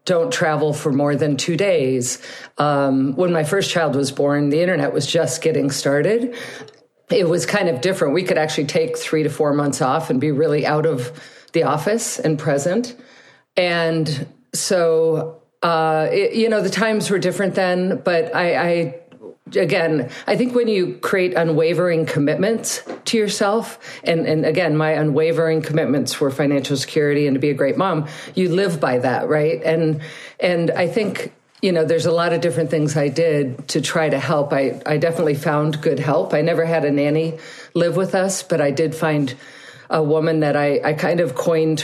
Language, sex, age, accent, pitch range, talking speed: English, female, 50-69, American, 150-175 Hz, 185 wpm